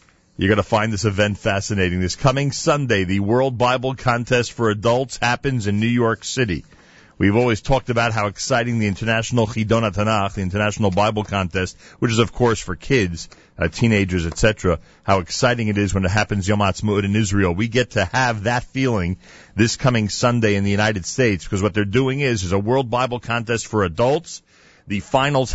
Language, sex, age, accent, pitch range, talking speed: English, male, 40-59, American, 100-130 Hz, 190 wpm